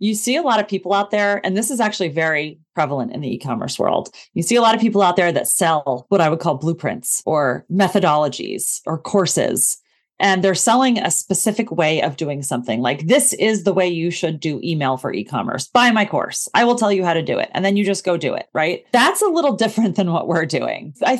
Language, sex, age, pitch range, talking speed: English, female, 30-49, 165-215 Hz, 240 wpm